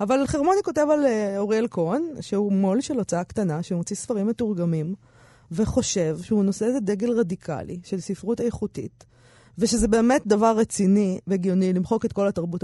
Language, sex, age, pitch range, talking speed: Hebrew, female, 20-39, 175-250 Hz, 150 wpm